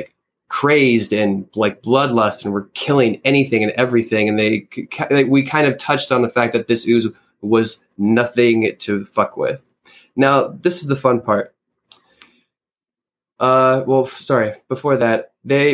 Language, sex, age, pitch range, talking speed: English, male, 20-39, 115-135 Hz, 150 wpm